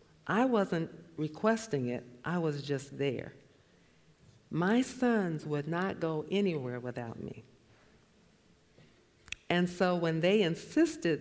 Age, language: 50-69, English